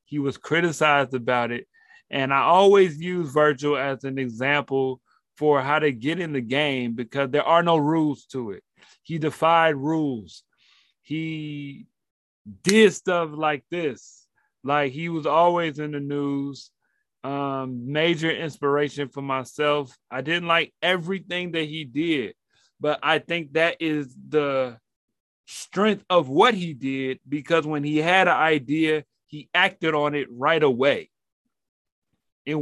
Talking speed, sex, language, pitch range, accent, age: 145 wpm, male, English, 140-165 Hz, American, 30-49